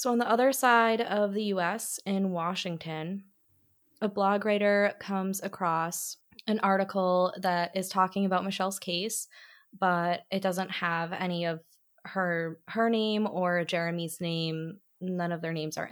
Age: 20-39